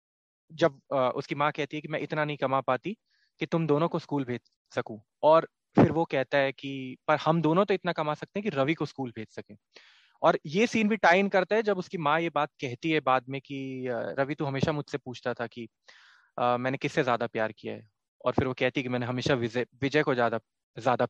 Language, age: Hindi, 20-39